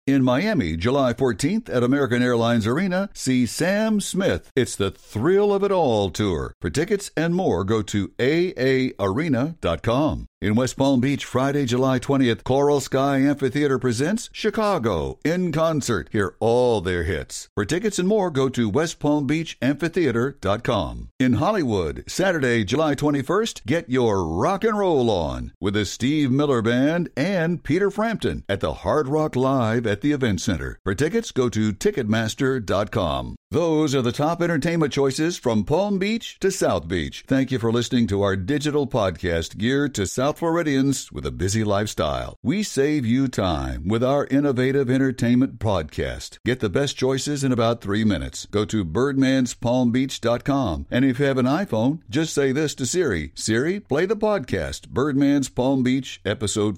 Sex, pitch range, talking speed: male, 105-145 Hz, 160 wpm